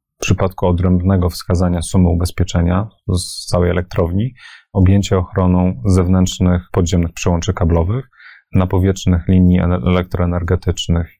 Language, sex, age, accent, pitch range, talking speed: Polish, male, 30-49, native, 90-95 Hz, 100 wpm